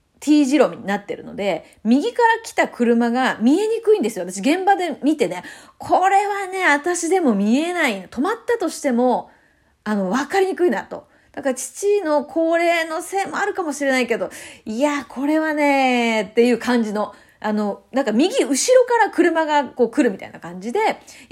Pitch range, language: 220-330 Hz, Japanese